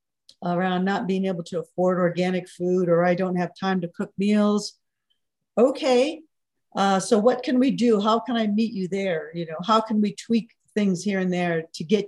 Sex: female